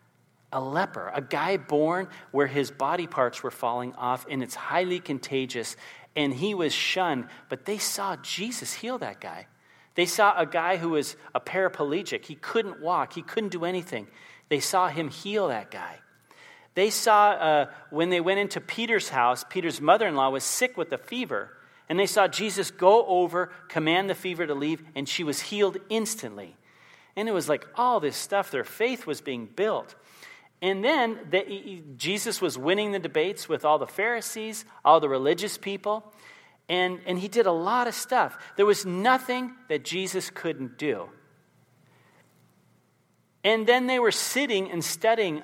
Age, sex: 40-59, male